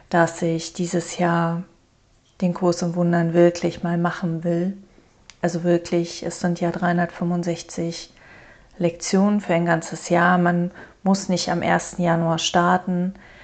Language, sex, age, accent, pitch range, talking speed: German, female, 30-49, German, 165-175 Hz, 135 wpm